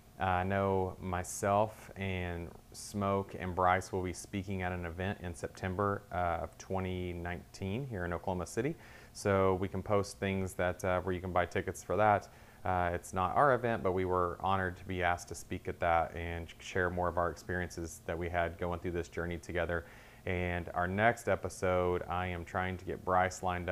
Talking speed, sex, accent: 195 wpm, male, American